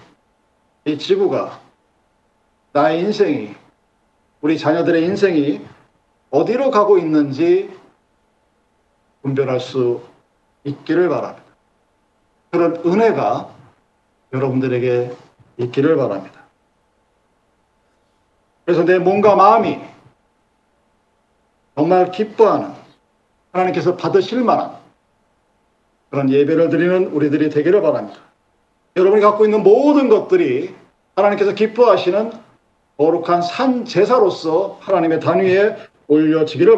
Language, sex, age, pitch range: Korean, male, 50-69, 150-215 Hz